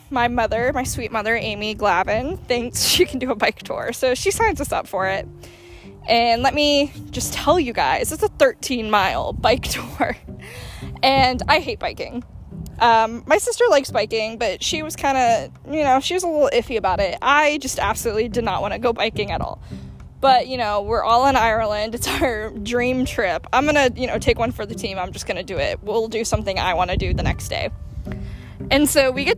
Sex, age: female, 10-29